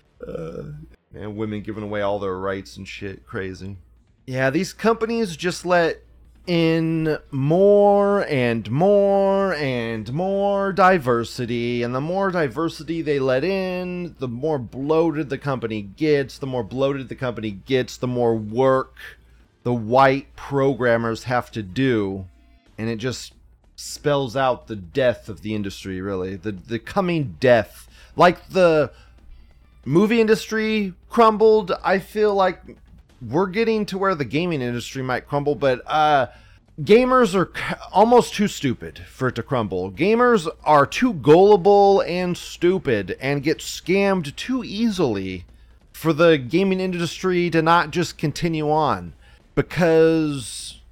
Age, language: 30-49, English